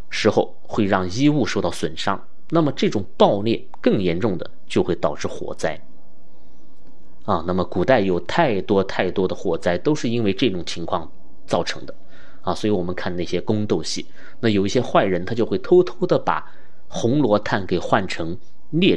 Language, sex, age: Chinese, male, 30-49